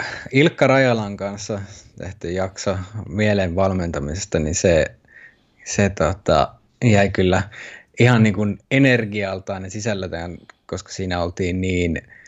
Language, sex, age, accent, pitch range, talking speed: Finnish, male, 20-39, native, 95-115 Hz, 105 wpm